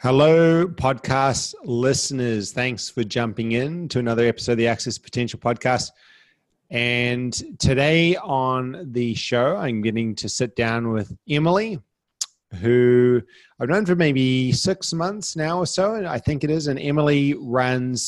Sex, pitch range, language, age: male, 115-140 Hz, English, 30-49